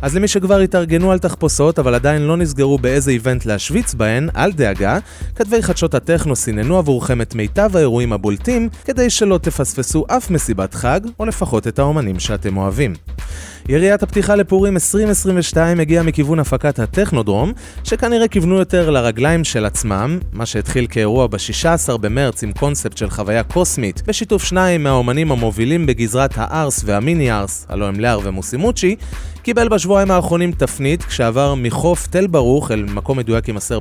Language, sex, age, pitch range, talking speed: Hebrew, male, 30-49, 115-180 Hz, 135 wpm